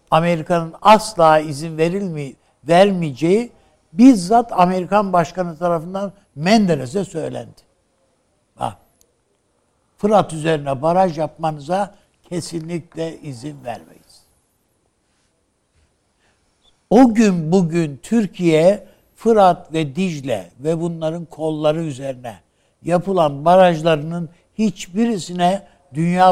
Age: 60-79